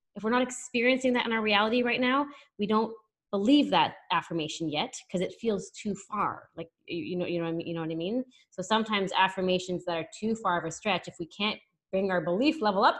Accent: American